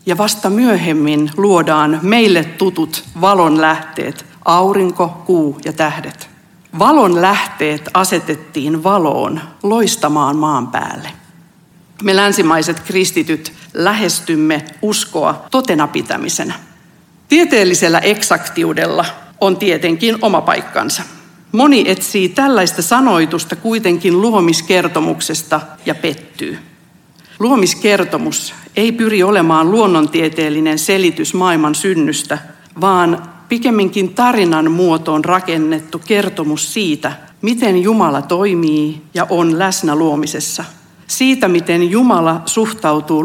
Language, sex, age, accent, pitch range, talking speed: Finnish, female, 50-69, native, 155-195 Hz, 90 wpm